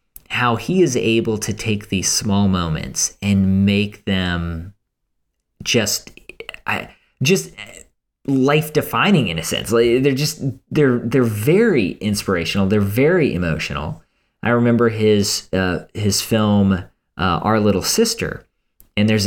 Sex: male